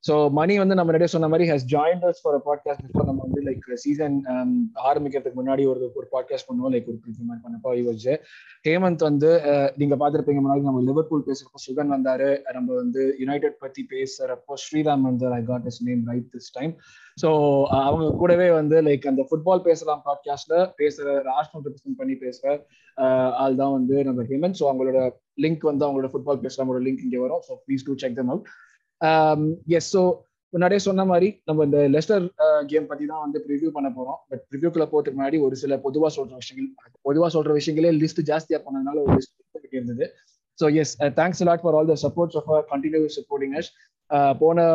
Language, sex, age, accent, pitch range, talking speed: Tamil, male, 20-39, native, 135-160 Hz, 175 wpm